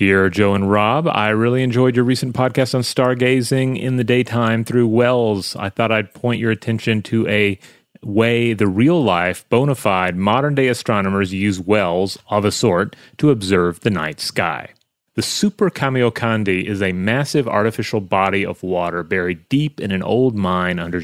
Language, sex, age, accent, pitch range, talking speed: English, male, 30-49, American, 95-125 Hz, 170 wpm